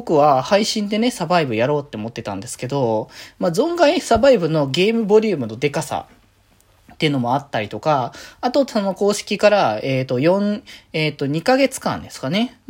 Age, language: 20-39, Japanese